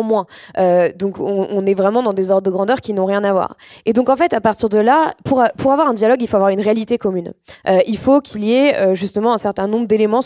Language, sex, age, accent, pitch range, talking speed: French, female, 20-39, French, 195-260 Hz, 280 wpm